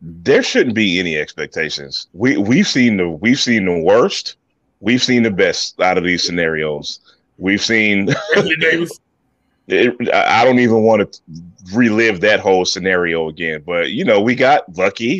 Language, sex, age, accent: English, male, 30-49, American